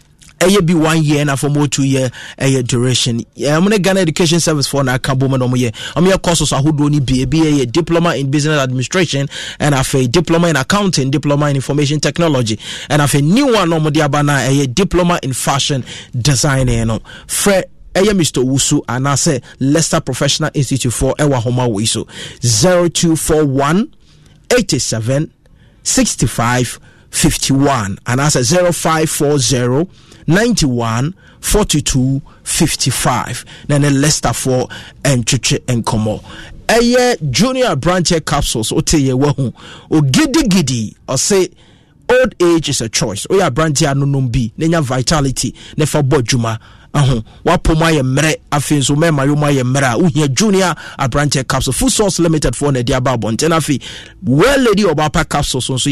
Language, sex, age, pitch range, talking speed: English, male, 30-49, 130-170 Hz, 160 wpm